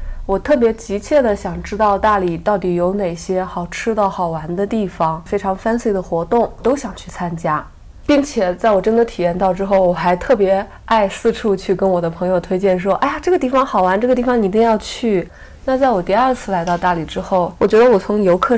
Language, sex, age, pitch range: Chinese, female, 20-39, 185-230 Hz